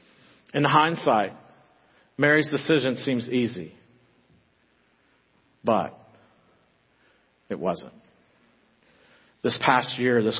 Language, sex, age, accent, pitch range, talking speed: English, male, 50-69, American, 130-165 Hz, 75 wpm